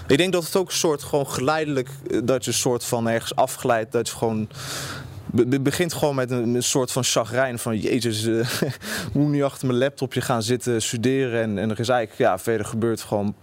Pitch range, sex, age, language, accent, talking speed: 110-140 Hz, male, 20-39, Dutch, Dutch, 220 wpm